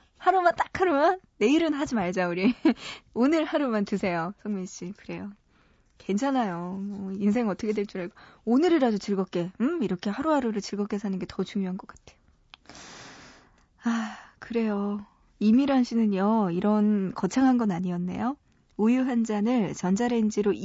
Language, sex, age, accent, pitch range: Korean, female, 20-39, native, 185-245 Hz